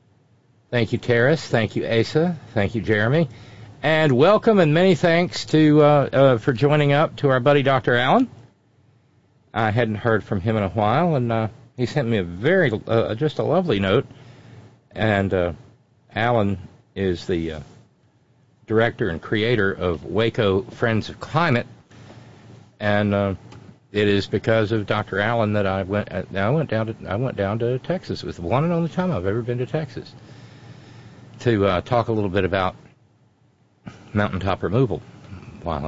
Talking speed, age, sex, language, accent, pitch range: 165 wpm, 50-69, male, English, American, 105-135 Hz